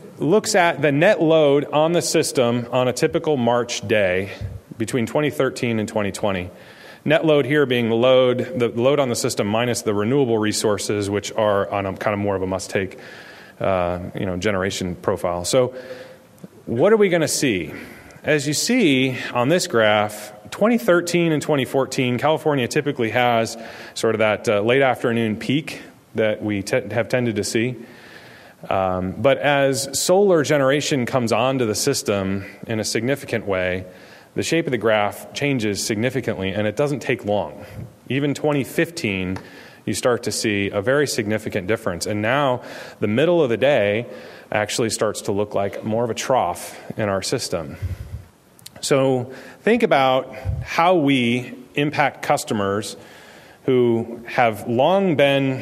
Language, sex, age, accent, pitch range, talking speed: English, male, 30-49, American, 105-140 Hz, 155 wpm